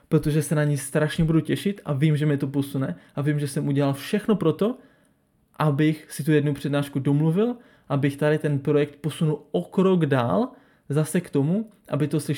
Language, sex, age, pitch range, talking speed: Czech, male, 20-39, 145-175 Hz, 190 wpm